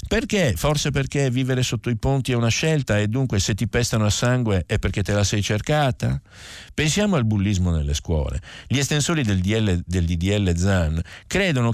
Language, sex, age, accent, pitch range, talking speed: Italian, male, 50-69, native, 85-110 Hz, 185 wpm